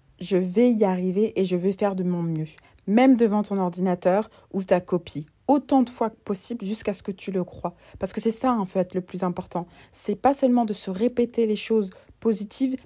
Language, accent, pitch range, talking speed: French, French, 190-230 Hz, 235 wpm